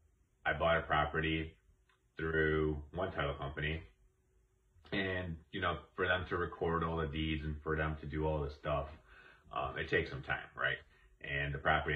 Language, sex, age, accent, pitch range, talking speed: English, male, 30-49, American, 75-80 Hz, 175 wpm